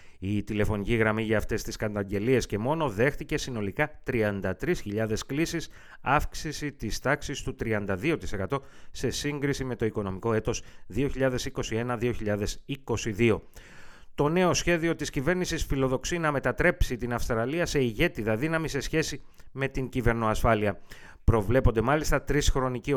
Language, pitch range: Greek, 110-140 Hz